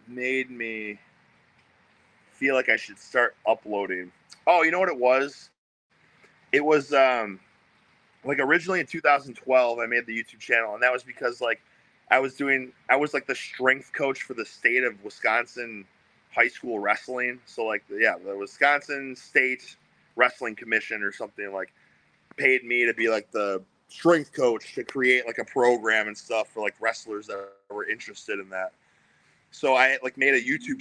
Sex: male